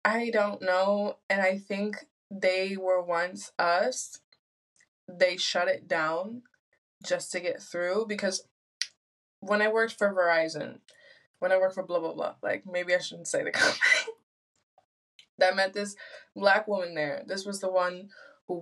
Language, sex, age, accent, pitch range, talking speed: English, female, 20-39, American, 180-225 Hz, 160 wpm